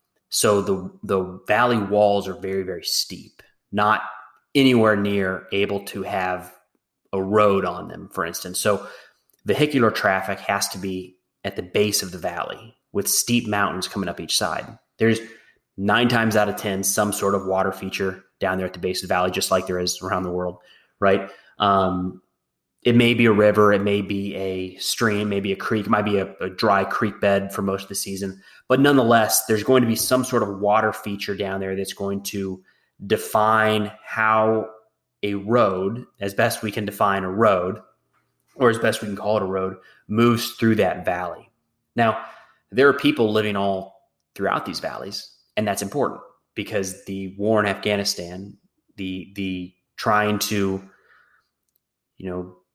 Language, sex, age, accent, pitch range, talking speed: English, male, 30-49, American, 95-110 Hz, 180 wpm